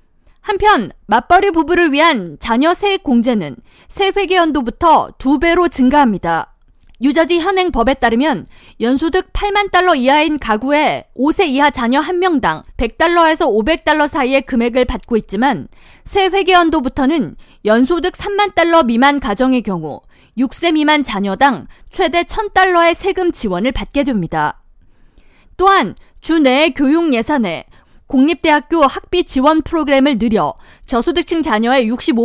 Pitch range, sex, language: 250-340 Hz, female, Korean